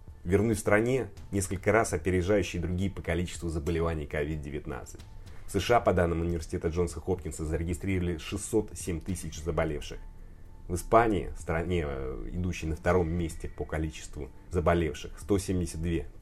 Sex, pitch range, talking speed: male, 85-100 Hz, 125 wpm